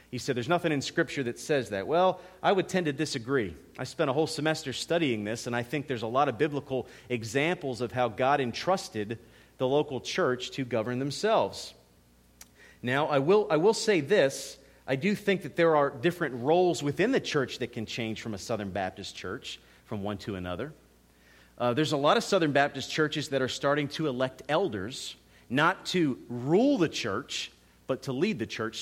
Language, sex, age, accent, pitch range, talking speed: English, male, 40-59, American, 115-165 Hz, 200 wpm